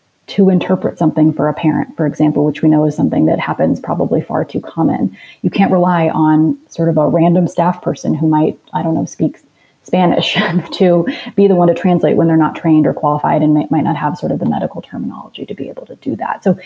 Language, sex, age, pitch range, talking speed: English, female, 30-49, 155-195 Hz, 235 wpm